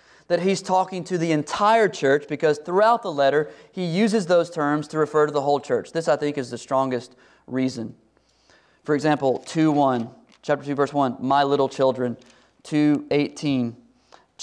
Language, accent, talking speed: English, American, 160 wpm